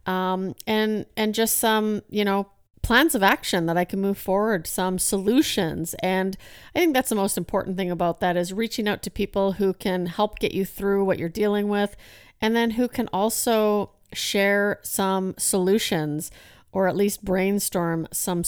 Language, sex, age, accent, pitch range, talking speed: English, female, 40-59, American, 175-210 Hz, 180 wpm